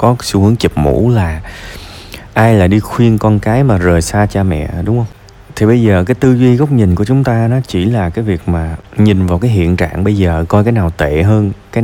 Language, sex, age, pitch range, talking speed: Vietnamese, male, 20-39, 85-105 Hz, 250 wpm